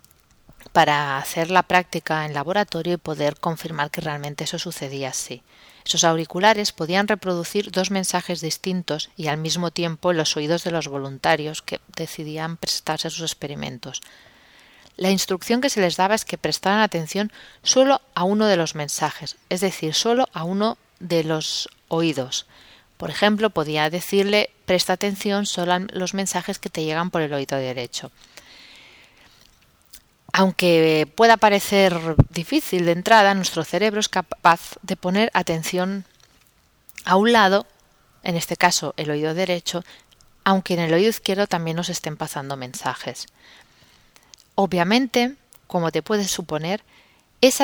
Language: Spanish